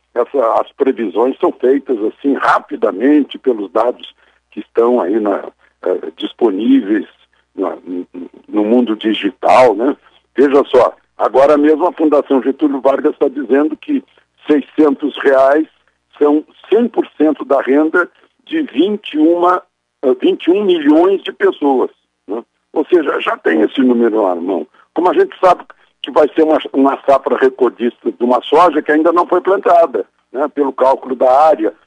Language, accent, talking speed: Portuguese, Brazilian, 135 wpm